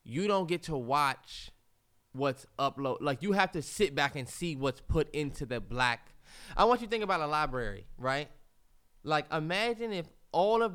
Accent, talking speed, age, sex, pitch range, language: American, 190 wpm, 20-39, male, 125-170 Hz, English